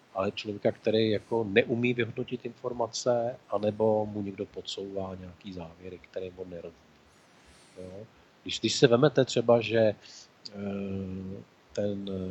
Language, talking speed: Czech, 110 wpm